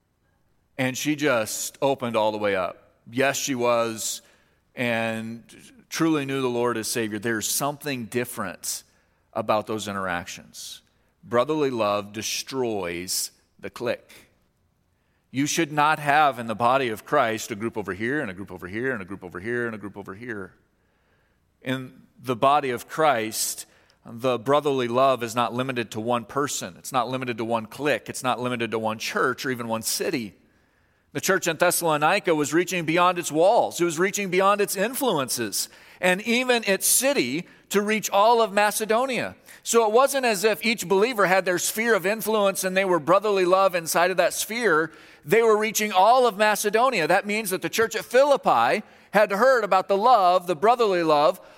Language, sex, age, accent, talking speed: English, male, 40-59, American, 180 wpm